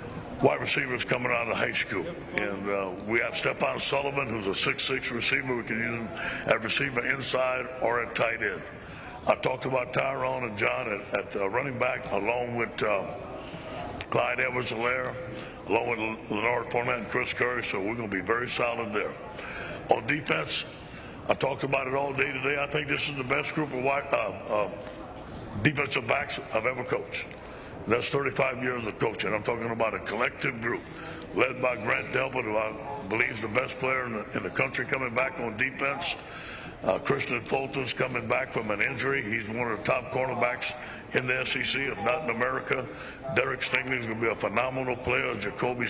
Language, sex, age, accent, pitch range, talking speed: English, male, 60-79, American, 115-135 Hz, 190 wpm